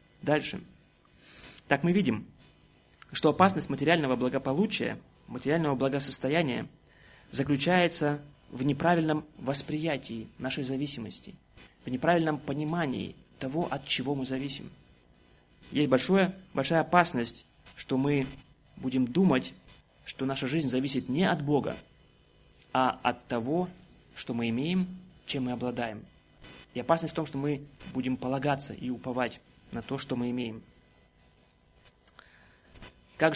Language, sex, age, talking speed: Russian, male, 20-39, 115 wpm